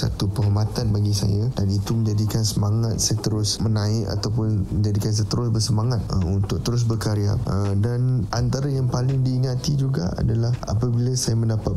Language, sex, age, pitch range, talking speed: Malay, male, 20-39, 105-115 Hz, 160 wpm